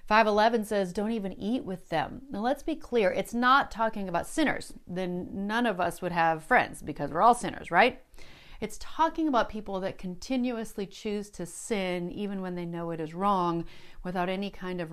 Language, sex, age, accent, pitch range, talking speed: English, female, 40-59, American, 175-235 Hz, 195 wpm